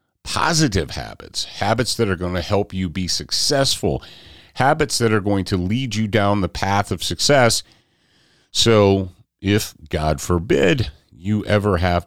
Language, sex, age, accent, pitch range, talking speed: English, male, 40-59, American, 80-110 Hz, 150 wpm